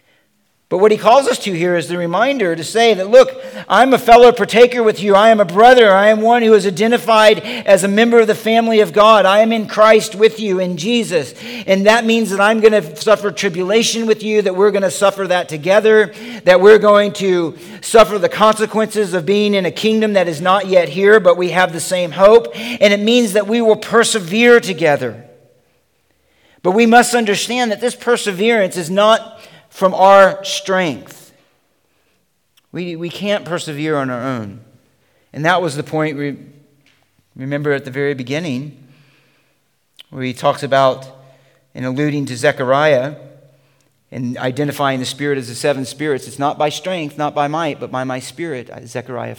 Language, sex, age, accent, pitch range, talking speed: English, male, 50-69, American, 135-215 Hz, 185 wpm